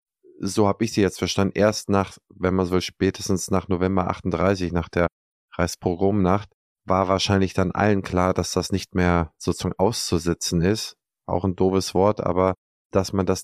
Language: German